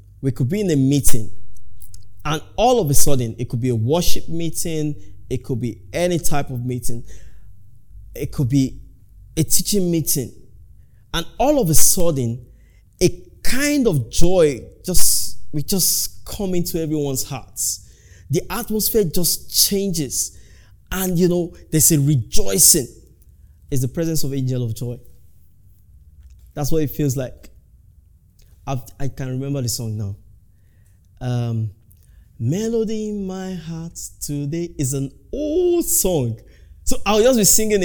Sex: male